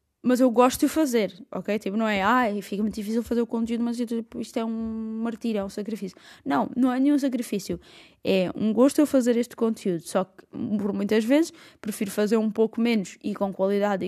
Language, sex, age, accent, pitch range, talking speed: Portuguese, female, 20-39, Brazilian, 210-245 Hz, 215 wpm